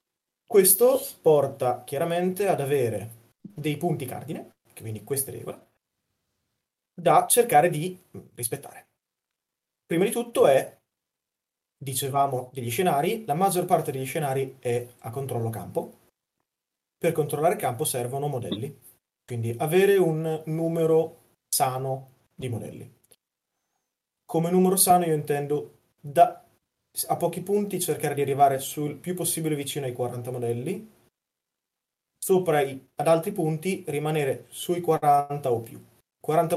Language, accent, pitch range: Italian, native, 135-170 Hz